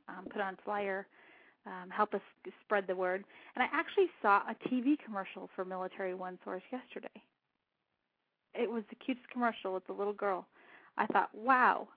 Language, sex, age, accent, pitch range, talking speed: English, female, 30-49, American, 200-280 Hz, 170 wpm